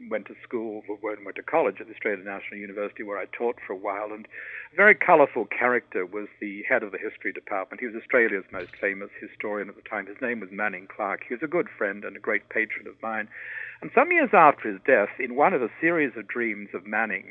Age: 60-79